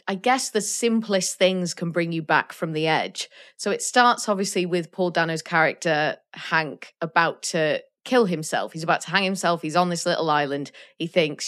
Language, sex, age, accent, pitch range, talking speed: English, female, 20-39, British, 170-210 Hz, 195 wpm